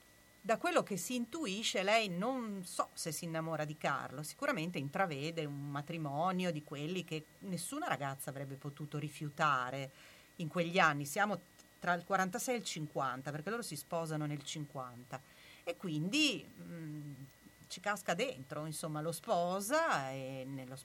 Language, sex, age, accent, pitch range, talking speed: Italian, female, 40-59, native, 150-180 Hz, 145 wpm